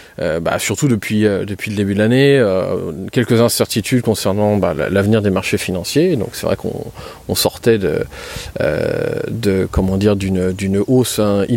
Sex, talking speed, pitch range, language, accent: male, 175 wpm, 100-125 Hz, French, French